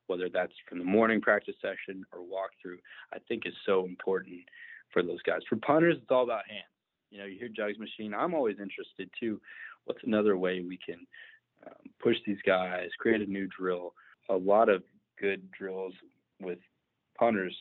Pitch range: 95-120 Hz